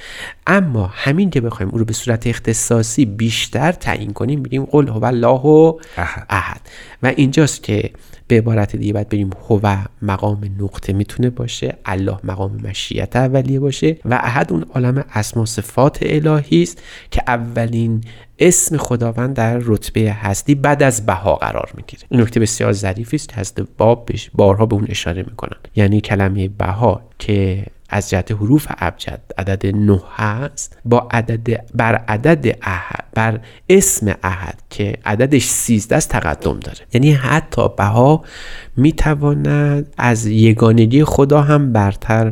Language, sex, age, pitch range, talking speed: Persian, male, 30-49, 105-135 Hz, 140 wpm